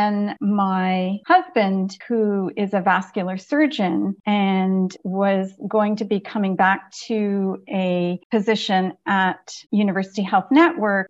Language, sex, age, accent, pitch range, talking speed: English, female, 40-59, American, 195-235 Hz, 120 wpm